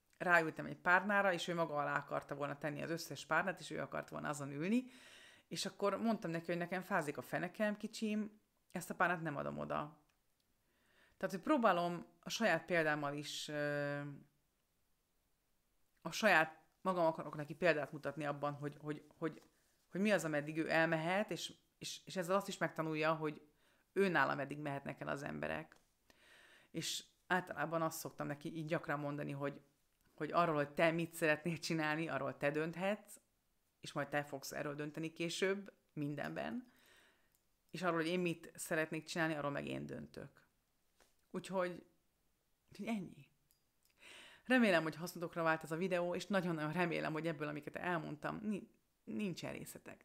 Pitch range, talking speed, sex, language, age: 150-180 Hz, 155 wpm, female, Hungarian, 30-49